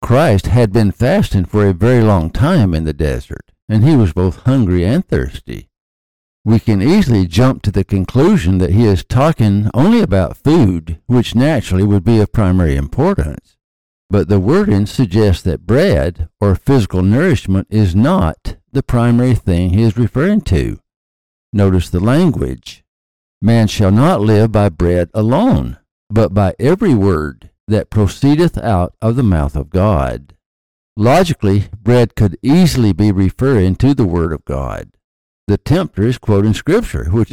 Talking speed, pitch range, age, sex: 155 wpm, 90-120 Hz, 60-79, male